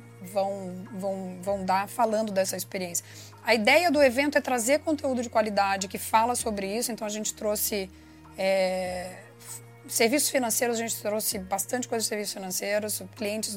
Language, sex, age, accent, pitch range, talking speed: Portuguese, female, 20-39, Brazilian, 190-225 Hz, 160 wpm